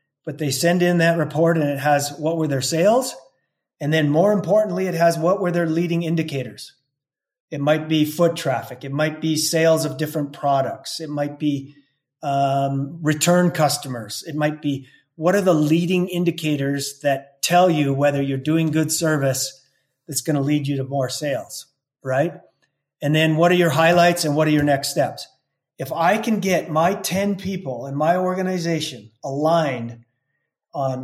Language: English